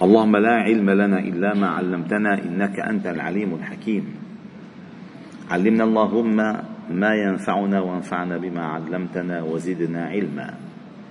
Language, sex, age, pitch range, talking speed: Arabic, male, 50-69, 90-110 Hz, 110 wpm